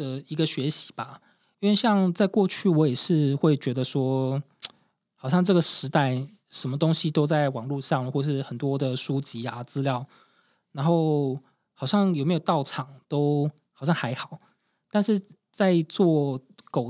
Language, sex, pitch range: Chinese, male, 135-170 Hz